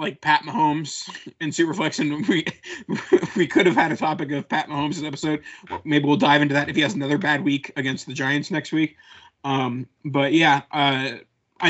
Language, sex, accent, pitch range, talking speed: English, male, American, 135-165 Hz, 195 wpm